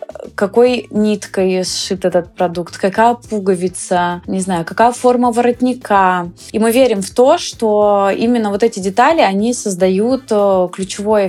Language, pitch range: Russian, 190-235 Hz